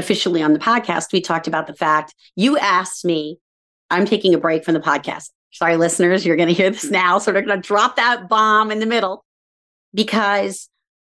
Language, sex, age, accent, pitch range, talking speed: English, female, 40-59, American, 165-200 Hz, 205 wpm